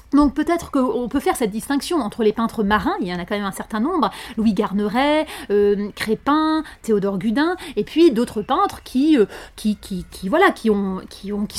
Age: 30-49